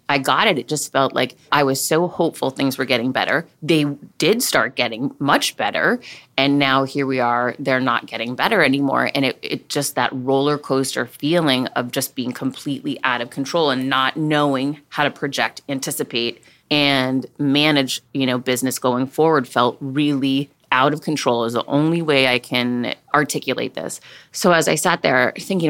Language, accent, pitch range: English, American, 125-145 Hz